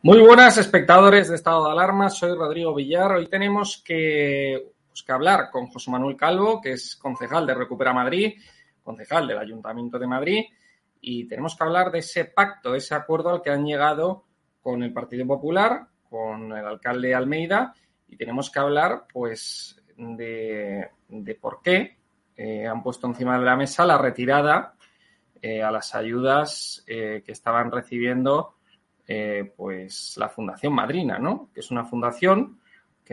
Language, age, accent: Spanish, 20-39, Spanish